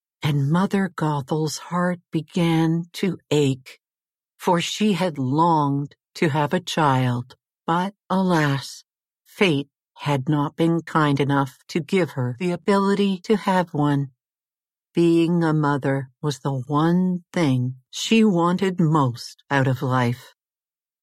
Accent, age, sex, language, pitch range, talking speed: American, 60-79, female, English, 135-175 Hz, 125 wpm